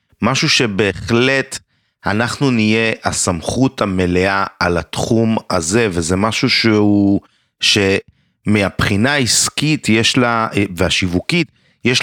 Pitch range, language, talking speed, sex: 95-130 Hz, Hebrew, 90 wpm, male